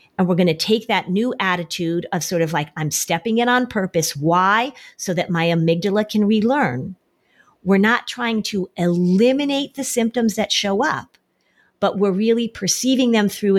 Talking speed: 175 wpm